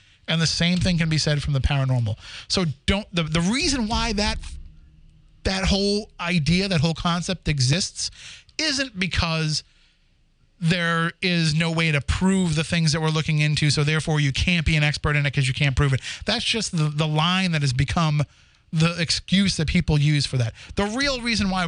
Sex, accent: male, American